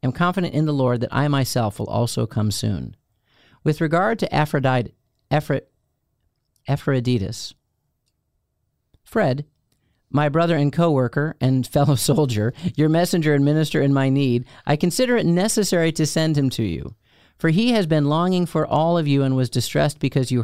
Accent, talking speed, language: American, 165 wpm, English